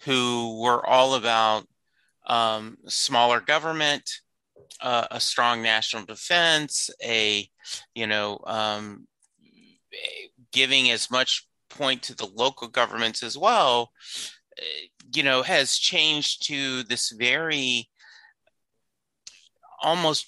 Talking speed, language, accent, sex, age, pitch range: 100 wpm, English, American, male, 30-49, 110-145 Hz